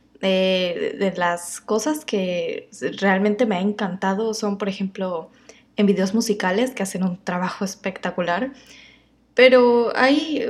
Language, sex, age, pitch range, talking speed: Spanish, female, 20-39, 195-250 Hz, 125 wpm